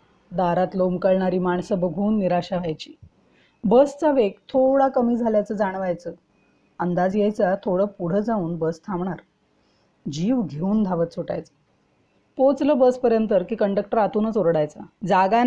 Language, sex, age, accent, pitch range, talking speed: Marathi, female, 30-49, native, 175-230 Hz, 115 wpm